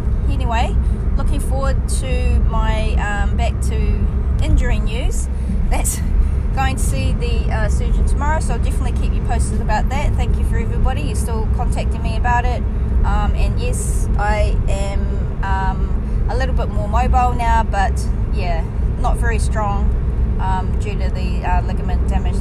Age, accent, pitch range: 20-39, Australian, 65-100 Hz